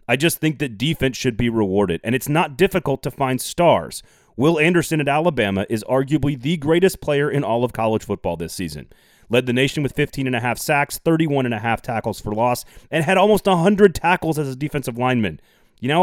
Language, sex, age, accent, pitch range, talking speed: English, male, 30-49, American, 105-145 Hz, 195 wpm